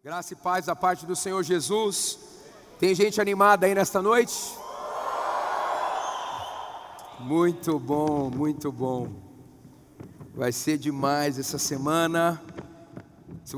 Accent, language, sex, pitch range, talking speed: Brazilian, Portuguese, male, 150-190 Hz, 105 wpm